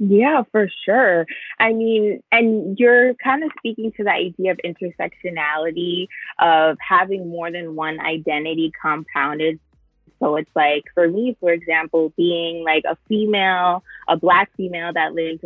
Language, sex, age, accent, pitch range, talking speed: English, female, 20-39, American, 160-185 Hz, 150 wpm